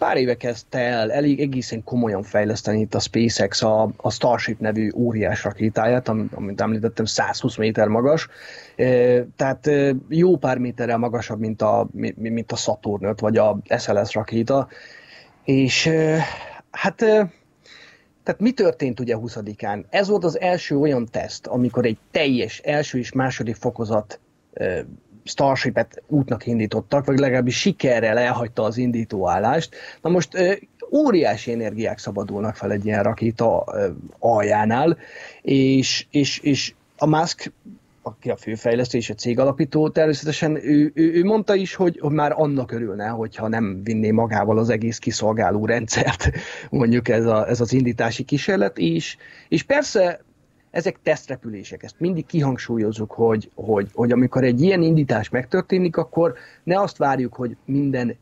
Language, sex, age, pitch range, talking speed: Hungarian, male, 30-49, 110-150 Hz, 140 wpm